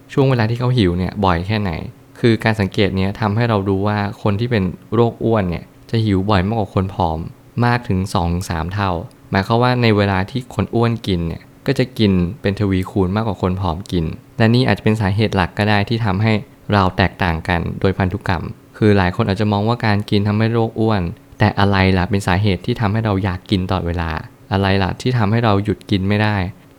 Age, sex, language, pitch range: 20-39, male, Thai, 95-115 Hz